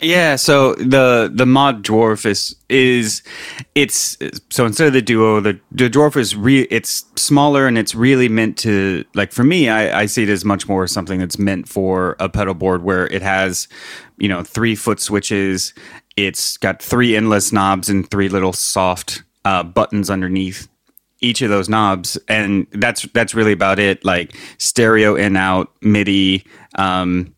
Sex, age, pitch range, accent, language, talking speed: male, 30-49, 90-110 Hz, American, English, 175 wpm